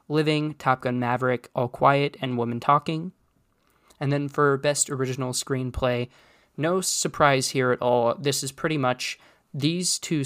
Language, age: English, 20-39